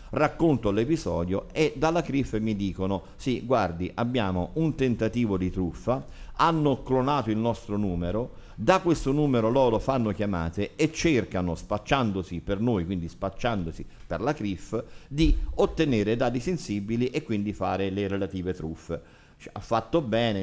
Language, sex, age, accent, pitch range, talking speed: Italian, male, 50-69, native, 95-130 Hz, 140 wpm